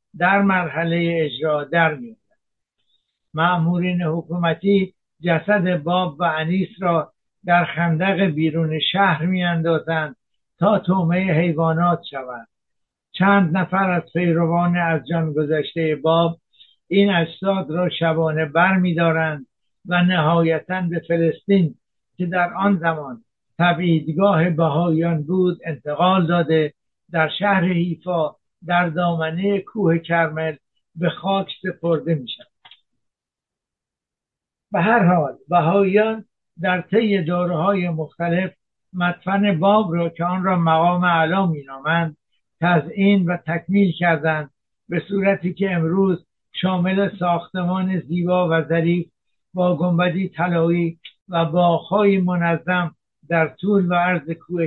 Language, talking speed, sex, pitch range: Persian, 110 wpm, male, 165-185 Hz